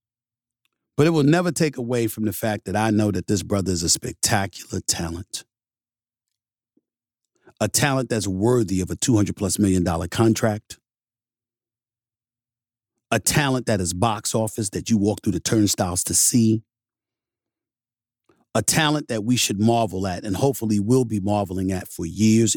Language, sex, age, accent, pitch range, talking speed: English, male, 40-59, American, 110-125 Hz, 155 wpm